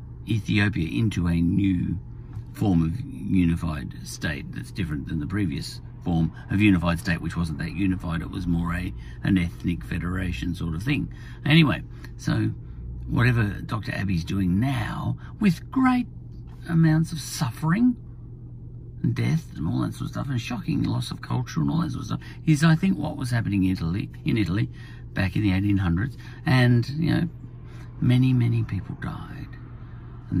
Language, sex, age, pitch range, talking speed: English, male, 50-69, 100-130 Hz, 165 wpm